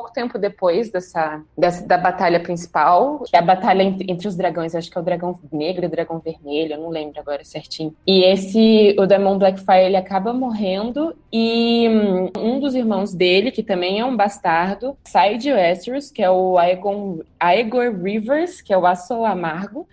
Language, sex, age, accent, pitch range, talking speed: Portuguese, female, 20-39, Brazilian, 185-235 Hz, 190 wpm